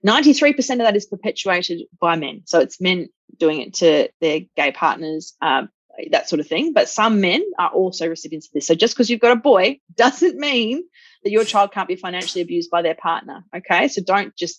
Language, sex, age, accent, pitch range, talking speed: English, female, 30-49, Australian, 170-245 Hz, 215 wpm